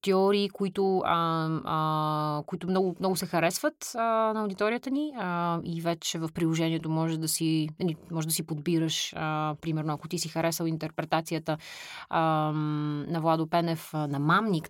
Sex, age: female, 30-49